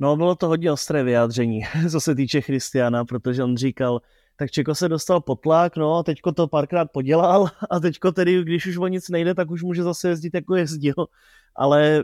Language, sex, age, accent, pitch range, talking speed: Czech, male, 30-49, native, 135-155 Hz, 200 wpm